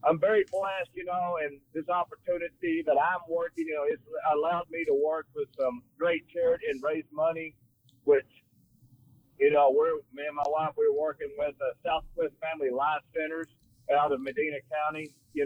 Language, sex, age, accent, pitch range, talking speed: English, male, 50-69, American, 145-190 Hz, 180 wpm